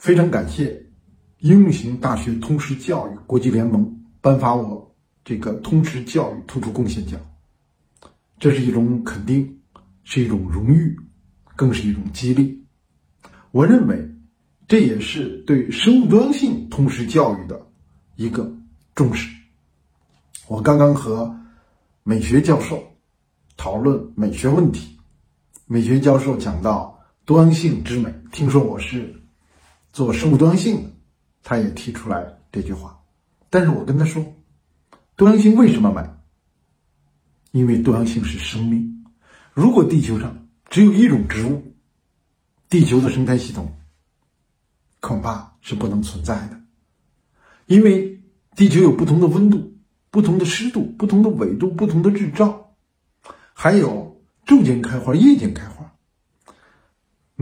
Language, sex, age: Chinese, male, 50-69